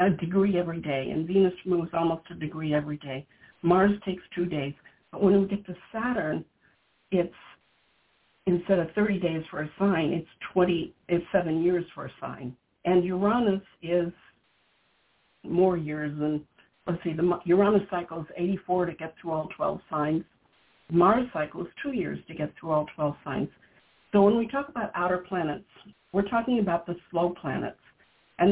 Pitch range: 170-205 Hz